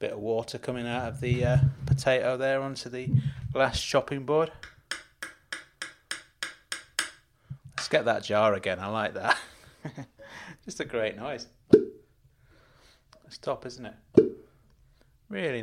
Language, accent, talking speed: English, British, 125 wpm